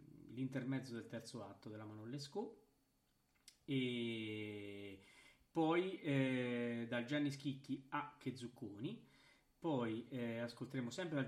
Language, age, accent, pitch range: Italian, 40-59, native, 115-135 Hz